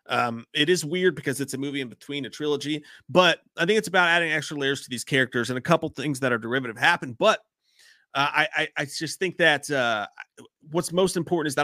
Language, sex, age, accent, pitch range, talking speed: English, male, 30-49, American, 140-195 Hz, 230 wpm